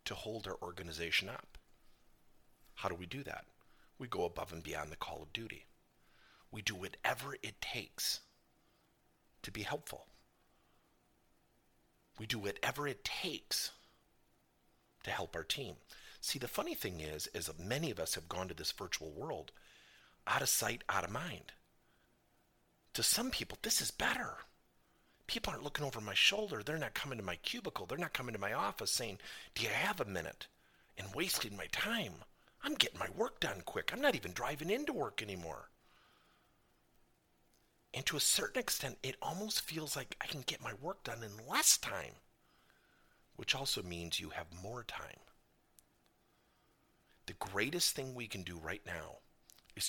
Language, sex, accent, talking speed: English, male, American, 165 wpm